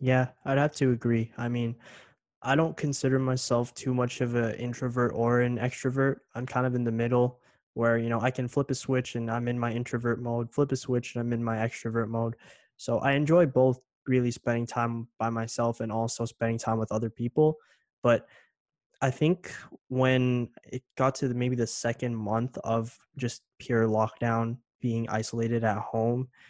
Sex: male